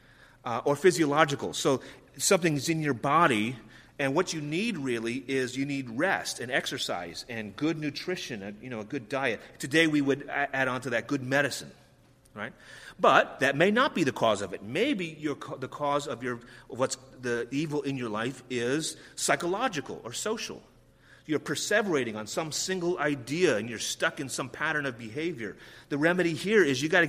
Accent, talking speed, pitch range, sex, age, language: American, 190 wpm, 130-160 Hz, male, 30-49, English